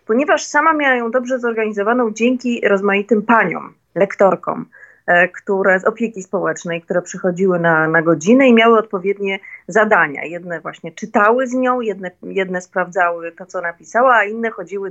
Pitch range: 180-225 Hz